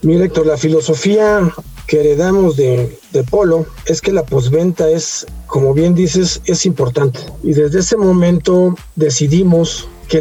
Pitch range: 145-175 Hz